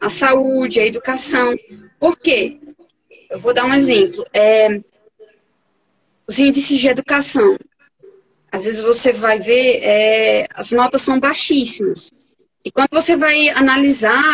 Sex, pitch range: female, 240-340 Hz